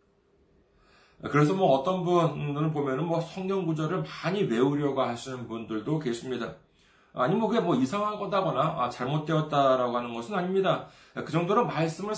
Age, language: 40-59, Korean